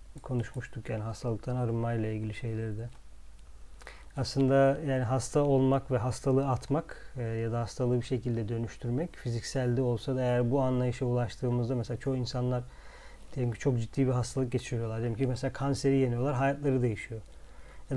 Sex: male